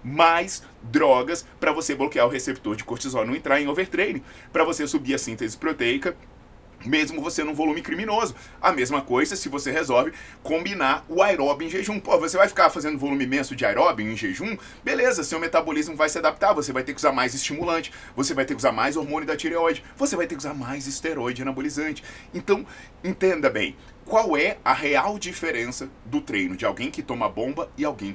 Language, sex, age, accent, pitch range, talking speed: Portuguese, male, 20-39, Brazilian, 125-180 Hz, 200 wpm